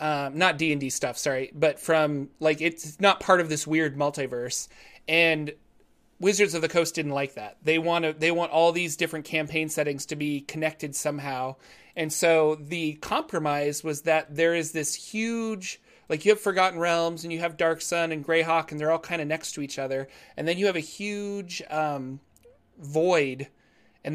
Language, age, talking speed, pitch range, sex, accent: English, 30-49, 190 wpm, 145-165 Hz, male, American